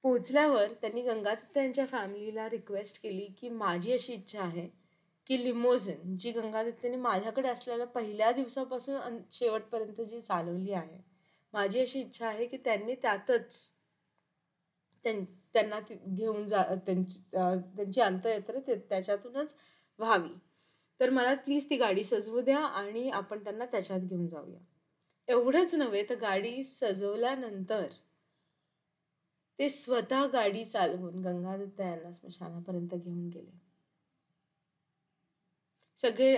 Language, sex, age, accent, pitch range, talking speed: Marathi, female, 30-49, native, 180-255 Hz, 110 wpm